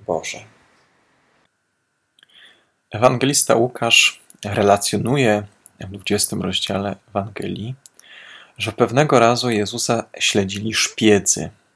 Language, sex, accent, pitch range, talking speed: Polish, male, native, 95-120 Hz, 70 wpm